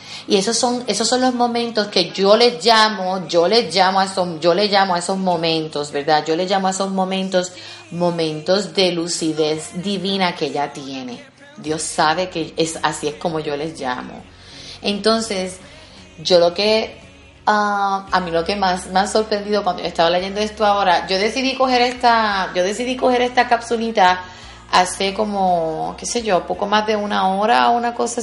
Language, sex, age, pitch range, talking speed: Spanish, female, 30-49, 165-210 Hz, 185 wpm